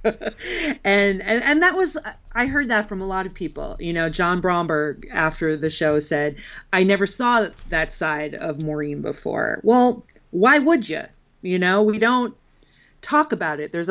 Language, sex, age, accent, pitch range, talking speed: English, female, 40-59, American, 165-220 Hz, 175 wpm